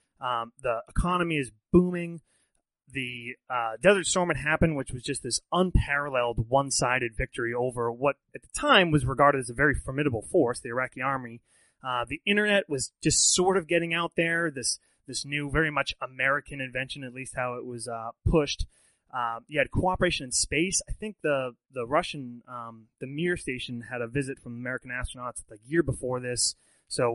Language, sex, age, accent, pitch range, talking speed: English, male, 30-49, American, 125-170 Hz, 185 wpm